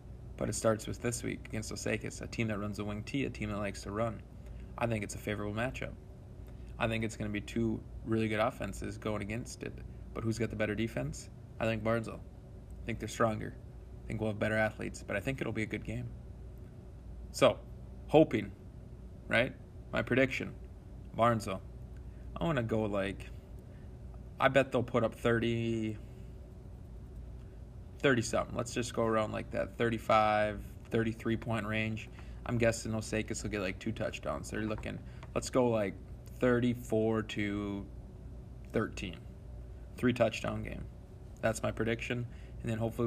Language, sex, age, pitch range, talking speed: English, male, 20-39, 105-120 Hz, 165 wpm